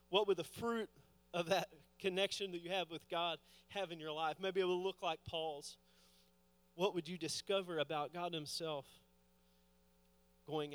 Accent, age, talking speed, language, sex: American, 30-49, 165 wpm, English, male